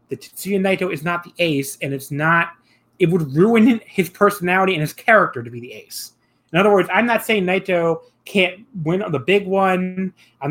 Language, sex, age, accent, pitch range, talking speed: English, male, 30-49, American, 150-200 Hz, 205 wpm